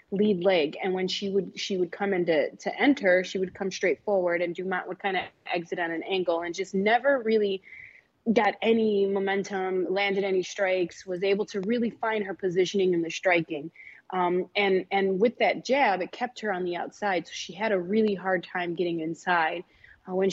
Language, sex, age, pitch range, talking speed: English, female, 20-39, 180-210 Hz, 205 wpm